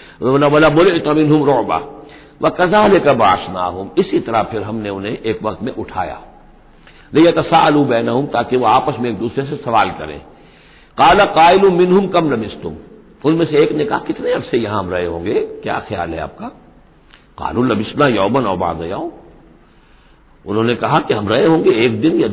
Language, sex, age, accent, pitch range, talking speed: Hindi, male, 60-79, native, 110-165 Hz, 175 wpm